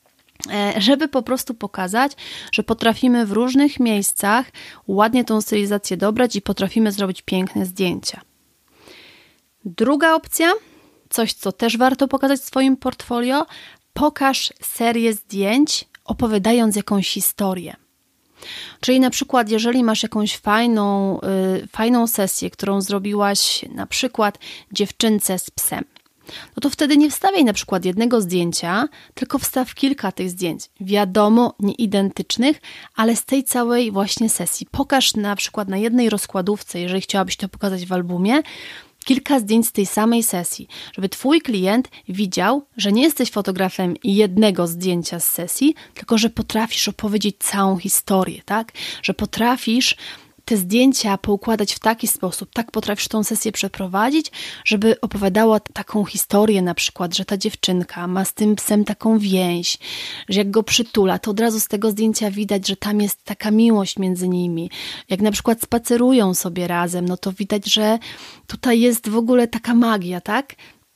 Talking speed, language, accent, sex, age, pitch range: 145 wpm, Polish, native, female, 30-49, 195-240 Hz